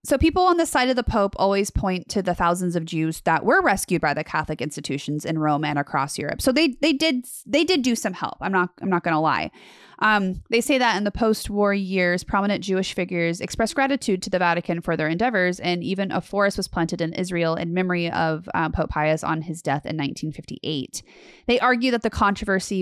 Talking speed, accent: 225 wpm, American